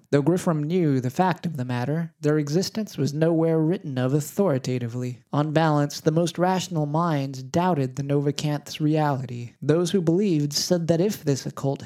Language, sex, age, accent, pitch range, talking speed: English, male, 20-39, American, 135-170 Hz, 165 wpm